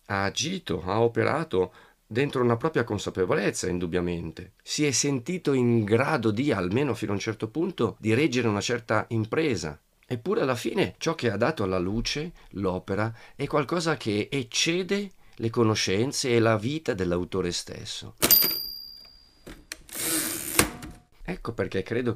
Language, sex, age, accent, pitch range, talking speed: Italian, male, 40-59, native, 95-125 Hz, 135 wpm